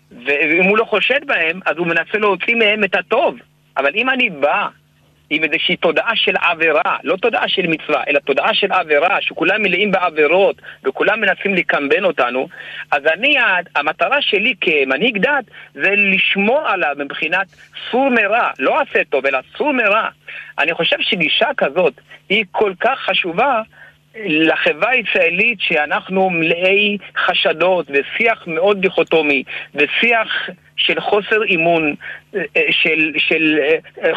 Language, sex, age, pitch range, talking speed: Hebrew, male, 50-69, 150-200 Hz, 135 wpm